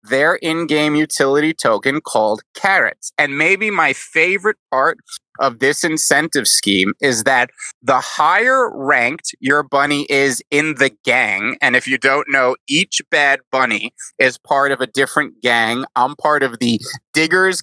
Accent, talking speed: American, 155 wpm